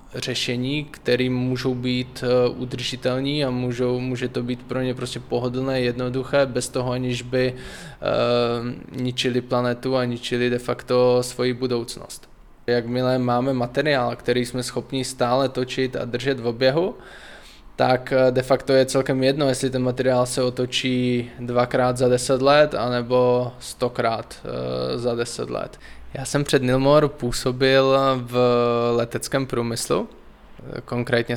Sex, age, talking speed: male, 20-39, 125 wpm